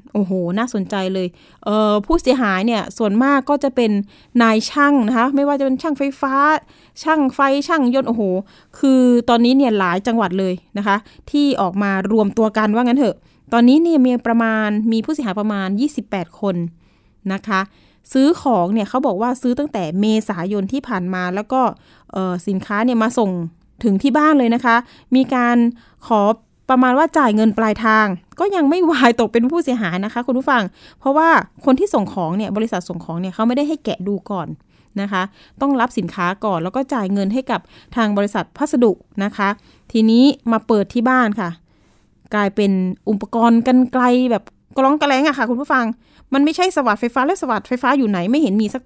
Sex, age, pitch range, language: female, 20-39, 200-265 Hz, Thai